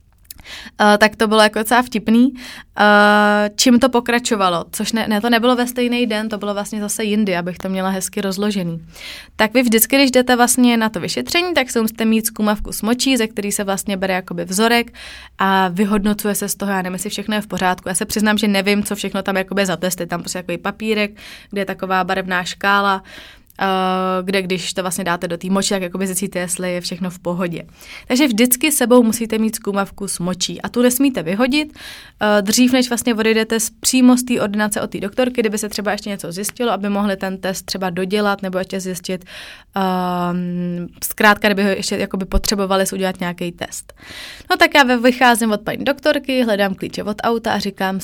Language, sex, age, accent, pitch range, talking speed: Czech, female, 20-39, native, 190-230 Hz, 200 wpm